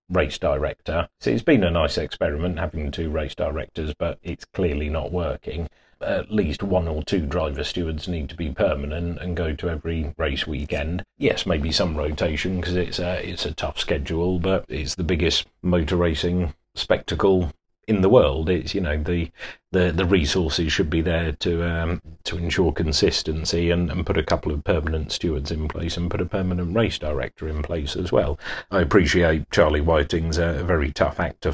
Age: 40-59